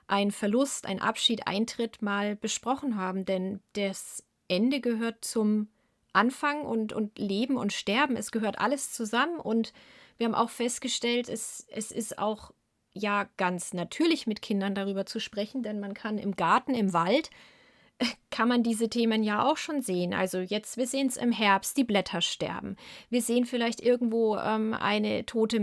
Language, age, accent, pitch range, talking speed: German, 30-49, German, 200-245 Hz, 170 wpm